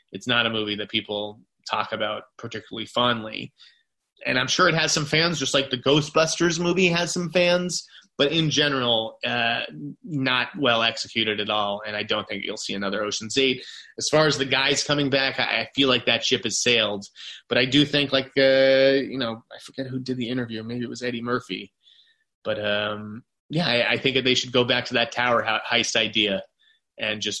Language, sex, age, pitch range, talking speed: English, male, 30-49, 110-145 Hz, 205 wpm